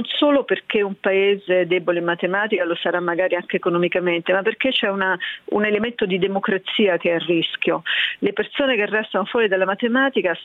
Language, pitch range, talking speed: Italian, 180-210 Hz, 185 wpm